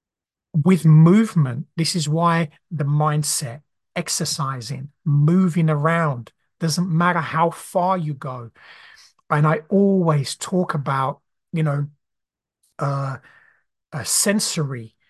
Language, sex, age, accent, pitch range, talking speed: English, male, 30-49, British, 145-180 Hz, 105 wpm